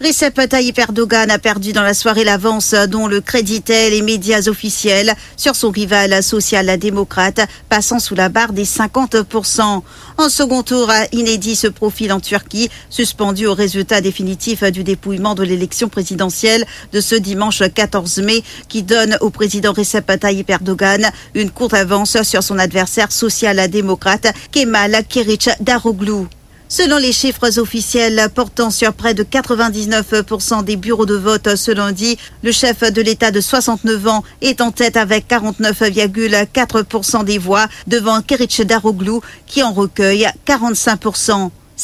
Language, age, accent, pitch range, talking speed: English, 50-69, French, 205-230 Hz, 145 wpm